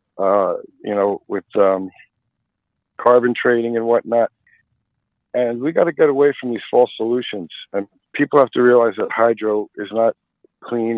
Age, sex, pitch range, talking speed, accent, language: 50-69, male, 105-120 Hz, 160 wpm, American, English